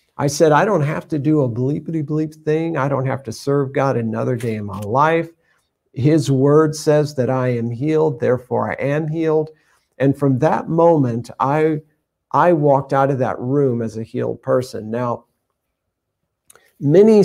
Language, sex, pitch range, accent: English, male, 120-150 Hz, American